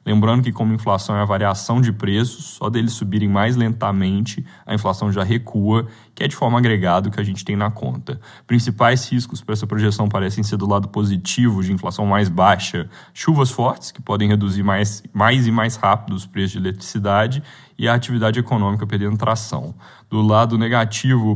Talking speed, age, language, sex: 190 wpm, 10-29, Portuguese, male